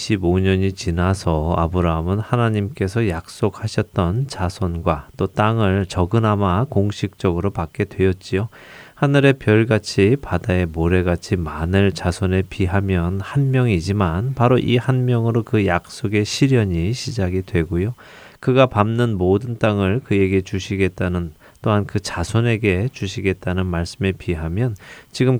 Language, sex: Korean, male